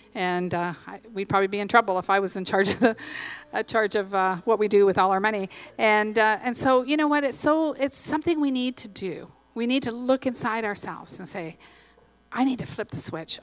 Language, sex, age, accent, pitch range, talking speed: English, female, 40-59, American, 190-240 Hz, 245 wpm